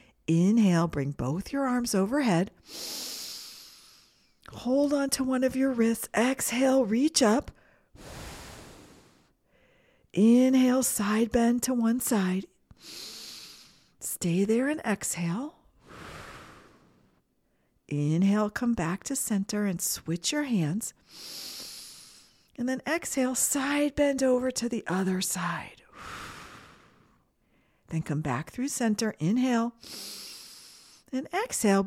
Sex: female